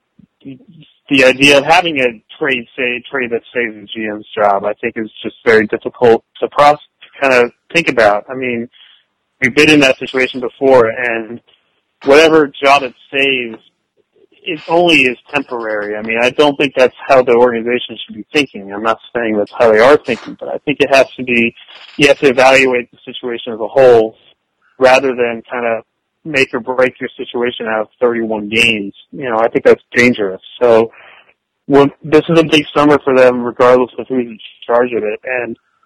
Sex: male